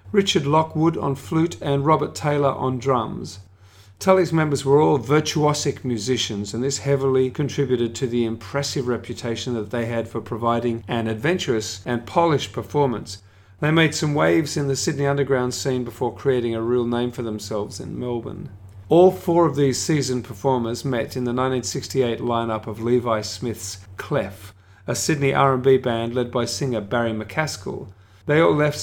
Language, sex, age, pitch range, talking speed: English, male, 40-59, 115-145 Hz, 160 wpm